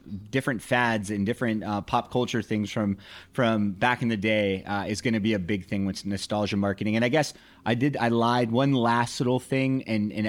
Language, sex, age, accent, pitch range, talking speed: English, male, 30-49, American, 105-120 Hz, 220 wpm